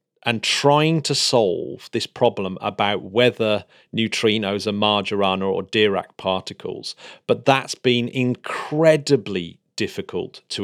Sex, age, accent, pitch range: male, 40-59, British, 100-130 Hz